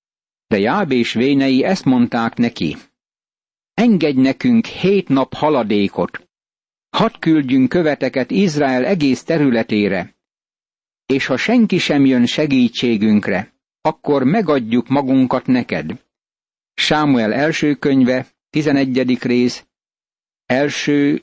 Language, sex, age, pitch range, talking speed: Hungarian, male, 60-79, 125-150 Hz, 95 wpm